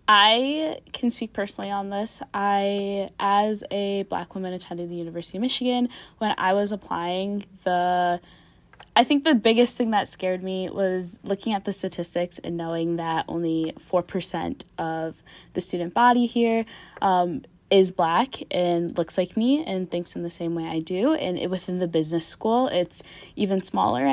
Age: 10-29